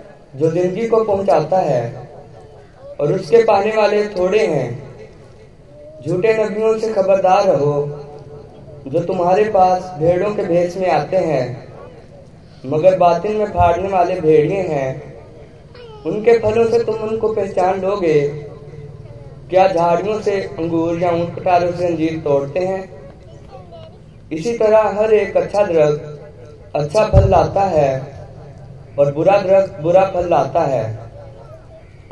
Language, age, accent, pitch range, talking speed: Hindi, 20-39, native, 140-190 Hz, 135 wpm